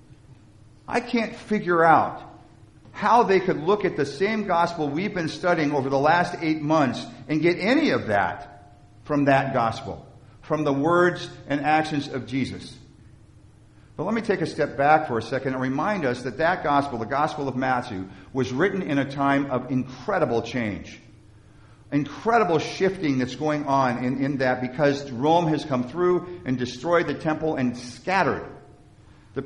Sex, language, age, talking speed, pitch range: male, English, 50-69, 170 wpm, 120-165 Hz